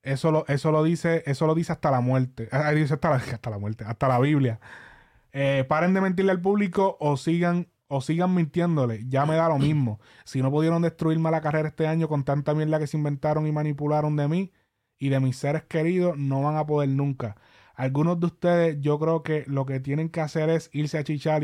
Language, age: Spanish, 20-39